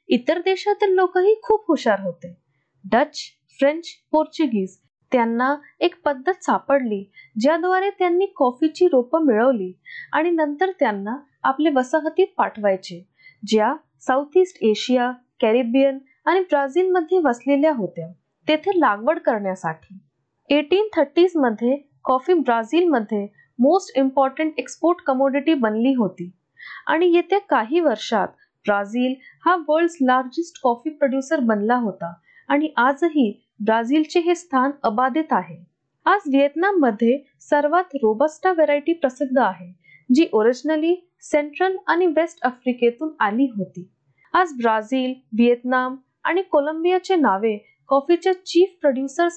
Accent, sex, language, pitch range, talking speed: native, female, Marathi, 230-335 Hz, 85 wpm